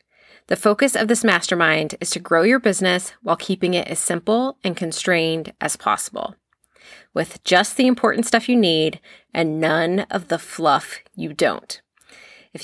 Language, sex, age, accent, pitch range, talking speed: English, female, 20-39, American, 175-230 Hz, 160 wpm